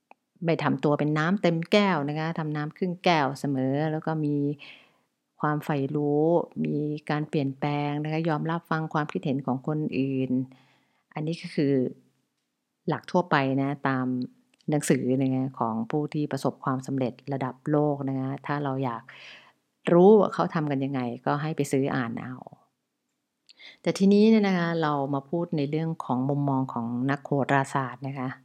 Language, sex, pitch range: English, female, 130-155 Hz